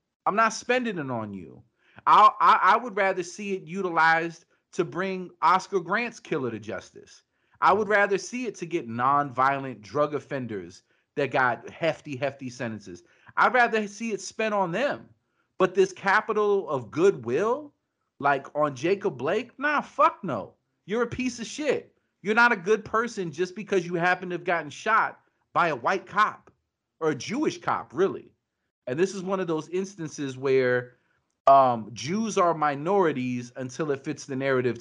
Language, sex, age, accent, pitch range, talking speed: English, male, 40-59, American, 135-195 Hz, 170 wpm